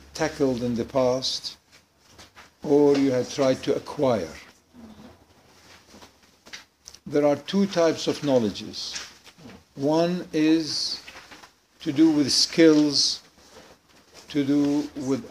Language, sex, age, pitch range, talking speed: English, male, 60-79, 115-155 Hz, 100 wpm